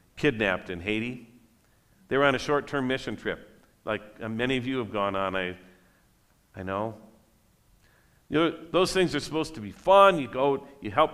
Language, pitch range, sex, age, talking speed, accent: English, 105-140 Hz, male, 50-69, 185 wpm, American